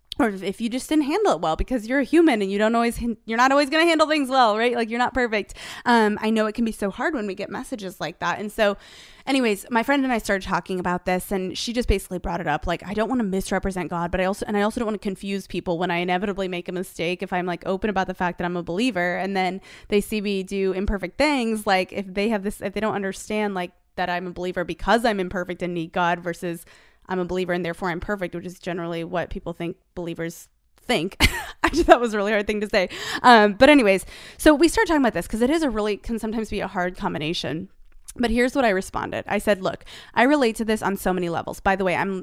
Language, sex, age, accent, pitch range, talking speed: English, female, 20-39, American, 180-225 Hz, 270 wpm